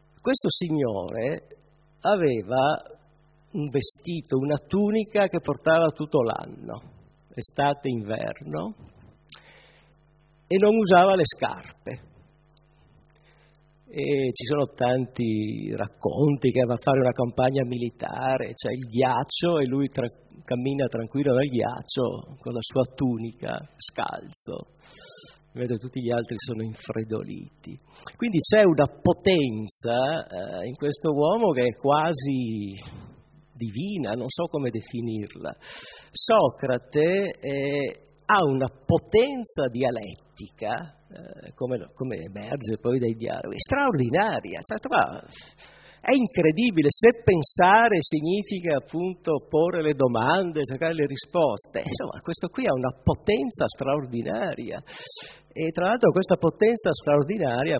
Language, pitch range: Italian, 125-170 Hz